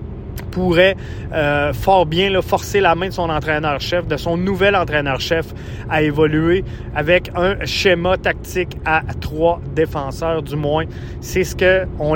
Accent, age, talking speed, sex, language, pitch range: Canadian, 30-49, 145 wpm, male, French, 145-180 Hz